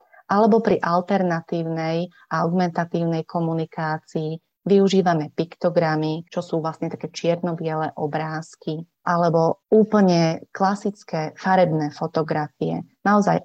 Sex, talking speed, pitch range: female, 90 wpm, 160-195 Hz